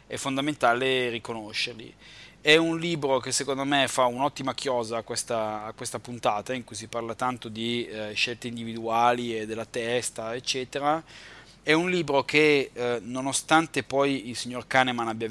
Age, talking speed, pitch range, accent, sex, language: 20-39, 160 wpm, 115-135 Hz, native, male, Italian